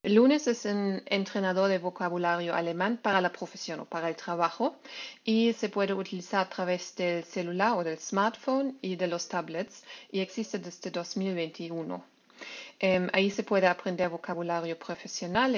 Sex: female